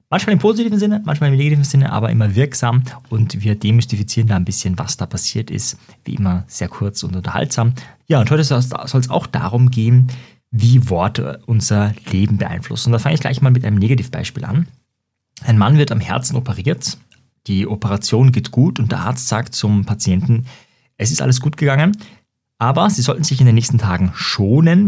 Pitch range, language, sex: 105-135 Hz, German, male